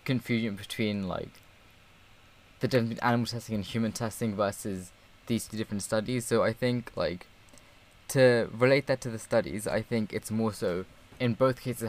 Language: English